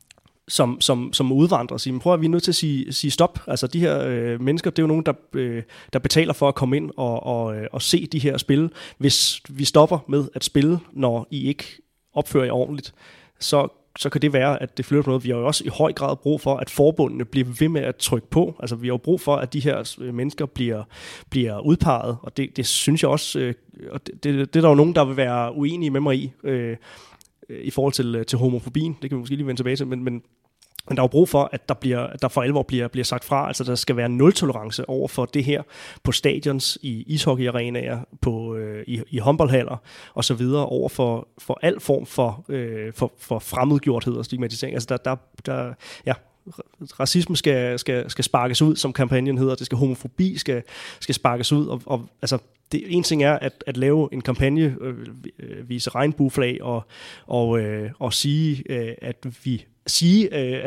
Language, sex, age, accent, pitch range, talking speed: Danish, male, 30-49, native, 125-145 Hz, 225 wpm